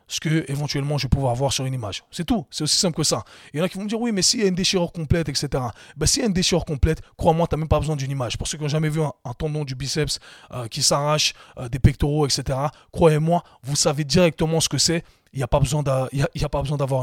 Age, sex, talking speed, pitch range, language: 20-39, male, 295 wpm, 135-165 Hz, French